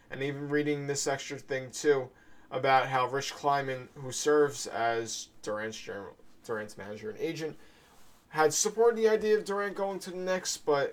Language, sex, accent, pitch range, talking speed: English, male, American, 125-165 Hz, 165 wpm